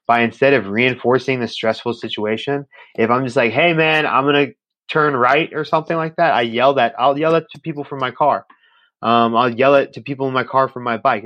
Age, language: 20-39, English